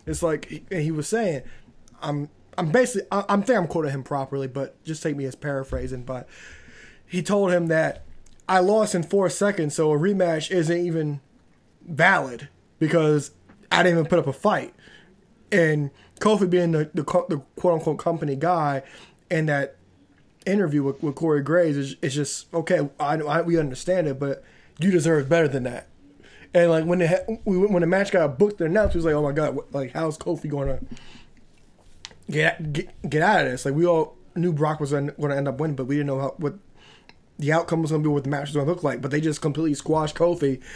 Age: 20-39